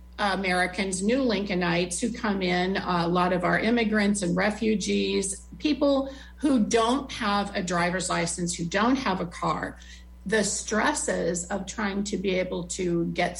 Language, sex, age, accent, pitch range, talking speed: English, female, 40-59, American, 175-215 Hz, 150 wpm